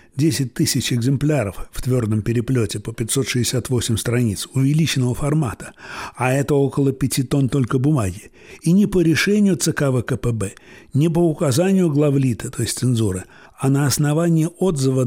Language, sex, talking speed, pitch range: Russian, male, 140 wpm, 120-160 Hz